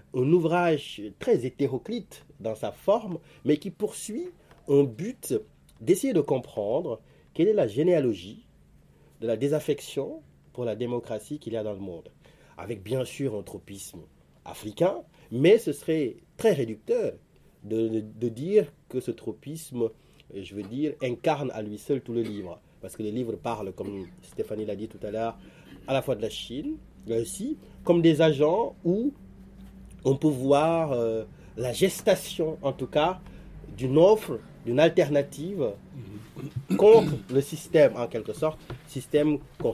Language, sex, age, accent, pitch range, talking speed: French, male, 30-49, French, 115-160 Hz, 155 wpm